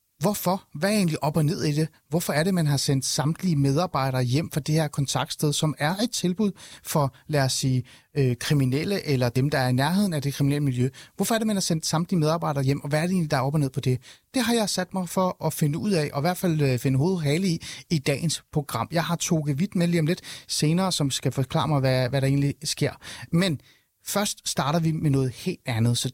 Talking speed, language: 250 wpm, Danish